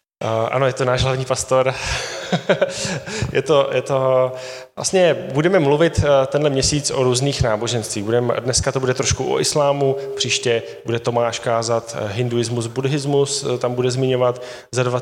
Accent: native